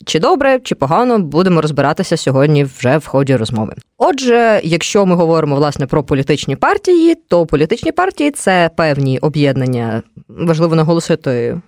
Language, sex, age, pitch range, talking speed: Ukrainian, female, 20-39, 145-215 Hz, 140 wpm